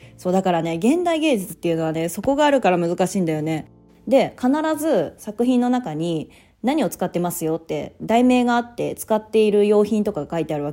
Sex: female